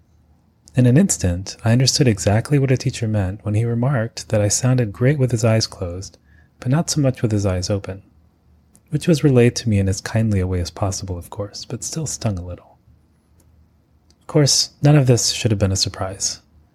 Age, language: 30-49, English